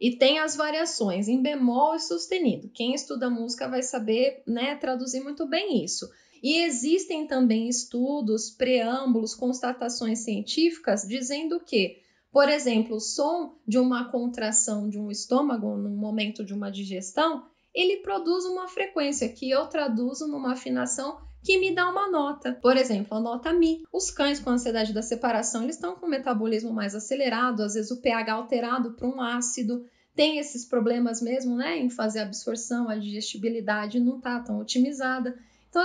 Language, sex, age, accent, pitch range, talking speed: Portuguese, female, 10-29, Brazilian, 230-305 Hz, 165 wpm